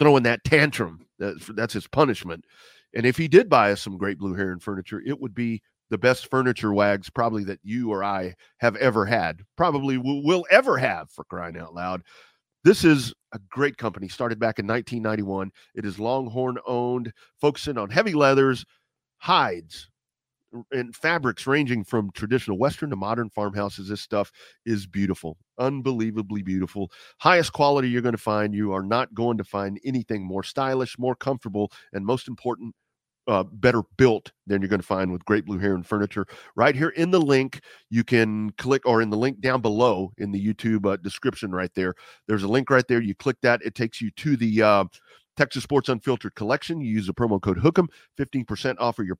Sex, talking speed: male, 190 wpm